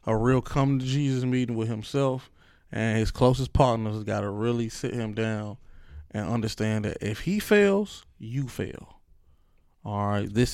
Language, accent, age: English, American, 20-39